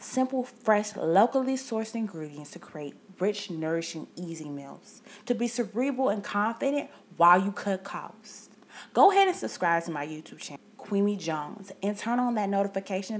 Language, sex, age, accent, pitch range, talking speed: English, female, 20-39, American, 175-230 Hz, 160 wpm